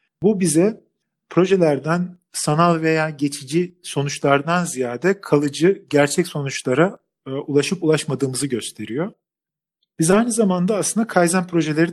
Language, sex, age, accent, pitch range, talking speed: Turkish, male, 40-59, native, 135-175 Hz, 105 wpm